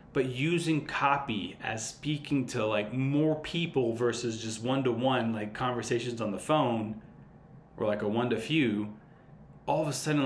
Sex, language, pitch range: male, English, 110-130 Hz